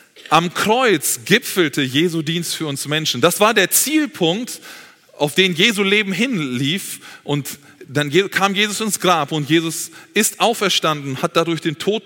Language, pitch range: German, 130-175 Hz